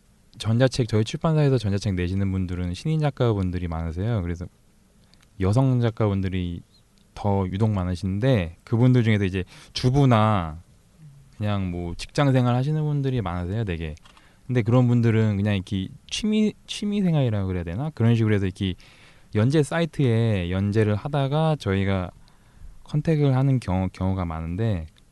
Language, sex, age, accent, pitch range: Korean, male, 20-39, native, 95-135 Hz